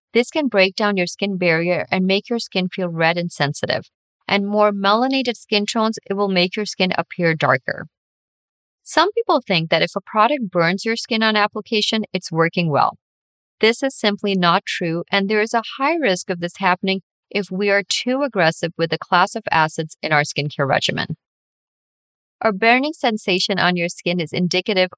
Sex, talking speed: female, 185 wpm